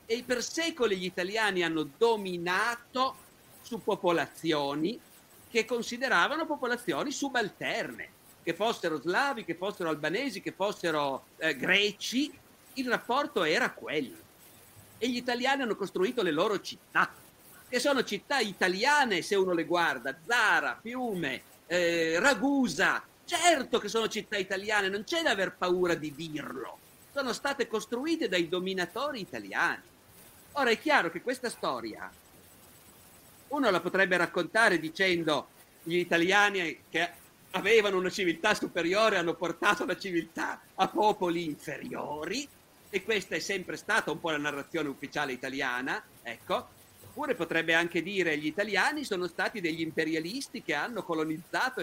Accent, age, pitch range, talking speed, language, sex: native, 50-69, 165-240 Hz, 130 wpm, Italian, male